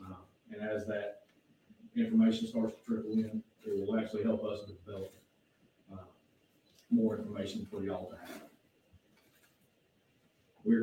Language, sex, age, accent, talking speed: English, male, 40-59, American, 120 wpm